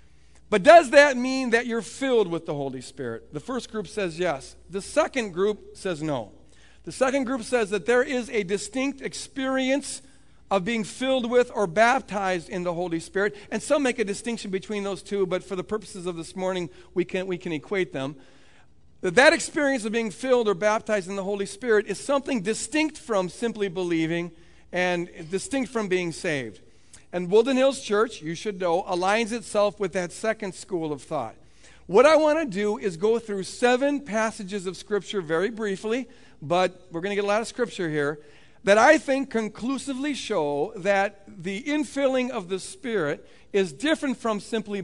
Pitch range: 180-235 Hz